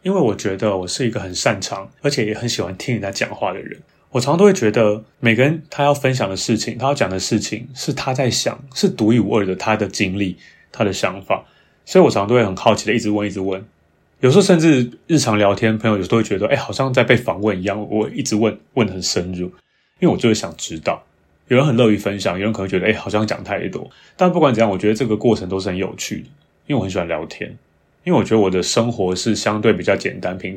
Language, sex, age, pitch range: Chinese, male, 30-49, 95-125 Hz